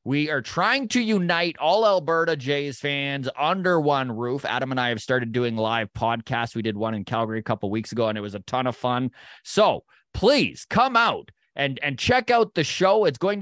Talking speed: 220 wpm